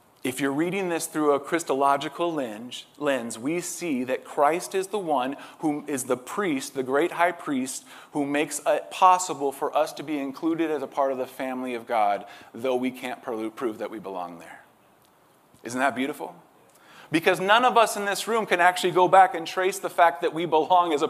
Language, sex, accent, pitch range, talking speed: English, male, American, 135-180 Hz, 200 wpm